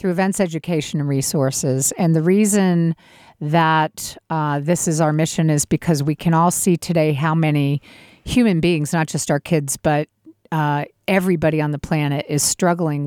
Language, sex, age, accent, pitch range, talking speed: English, female, 50-69, American, 150-175 Hz, 160 wpm